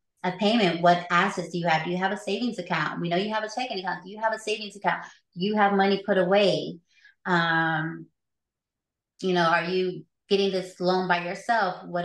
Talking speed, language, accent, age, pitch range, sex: 215 wpm, English, American, 30-49, 165-200 Hz, female